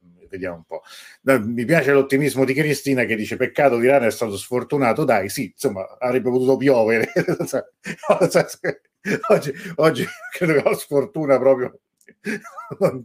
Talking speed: 155 wpm